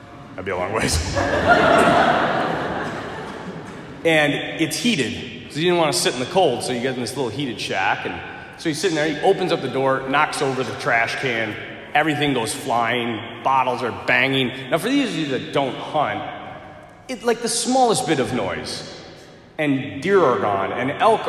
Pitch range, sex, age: 145-190 Hz, male, 30-49